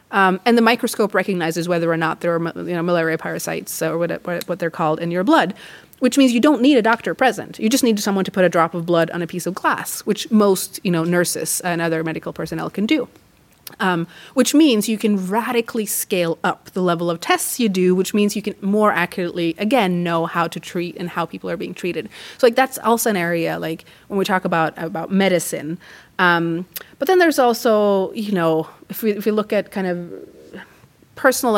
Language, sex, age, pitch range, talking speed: Swedish, female, 30-49, 170-210 Hz, 220 wpm